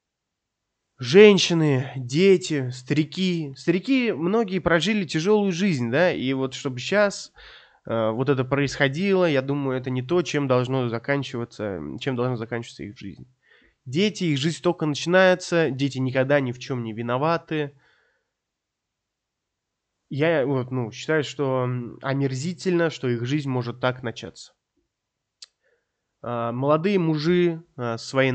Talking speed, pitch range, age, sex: 120 wpm, 125-155 Hz, 20-39, male